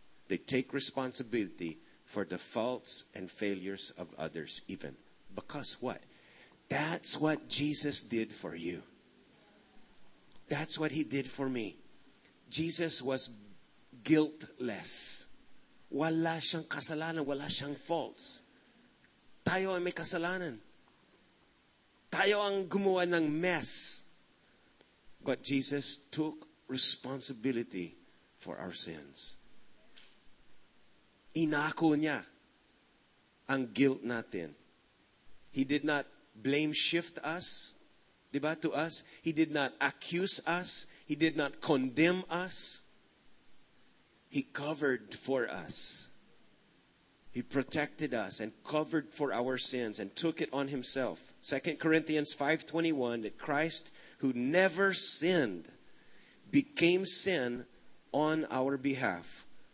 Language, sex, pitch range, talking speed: English, male, 125-160 Hz, 105 wpm